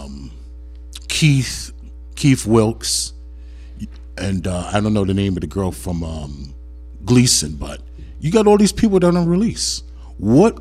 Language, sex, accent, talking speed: English, male, American, 155 wpm